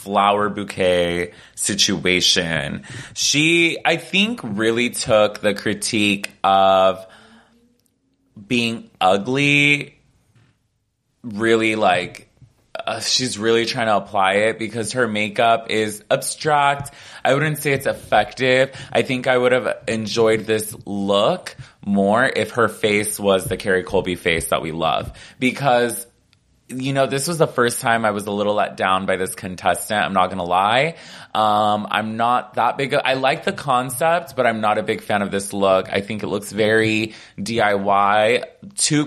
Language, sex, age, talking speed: English, male, 20-39, 155 wpm